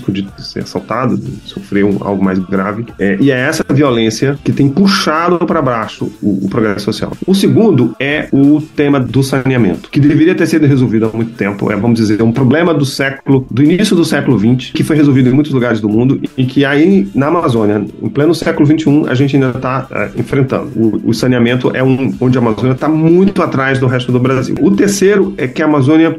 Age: 40-59